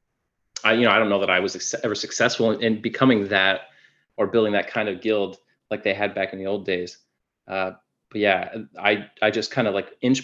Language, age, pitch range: English, 20-39, 95-110 Hz